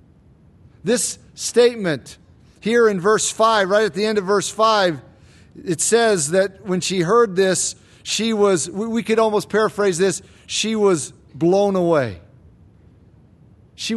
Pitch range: 180-235 Hz